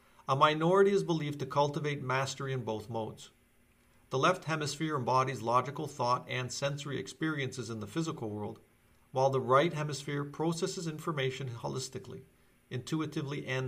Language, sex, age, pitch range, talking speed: English, male, 40-59, 125-150 Hz, 140 wpm